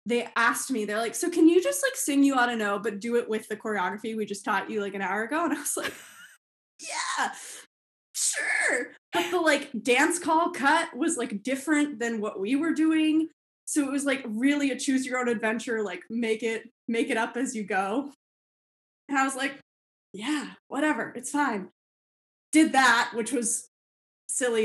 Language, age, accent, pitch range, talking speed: English, 10-29, American, 210-275 Hz, 195 wpm